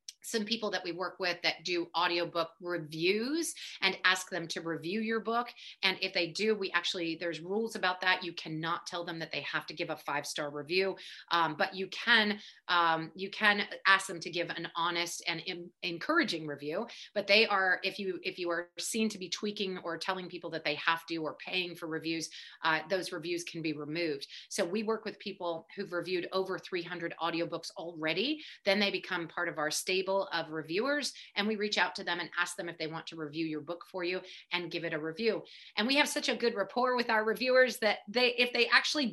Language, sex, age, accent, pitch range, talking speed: English, female, 30-49, American, 170-220 Hz, 220 wpm